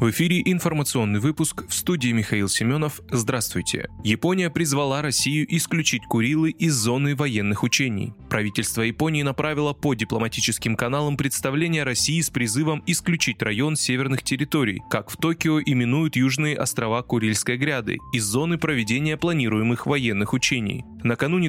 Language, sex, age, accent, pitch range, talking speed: Russian, male, 20-39, native, 115-150 Hz, 130 wpm